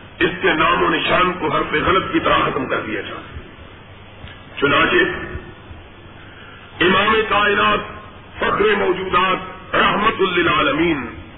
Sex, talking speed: male, 120 wpm